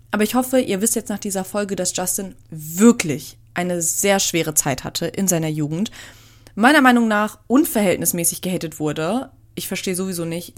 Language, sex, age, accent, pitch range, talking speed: German, female, 30-49, German, 170-210 Hz, 170 wpm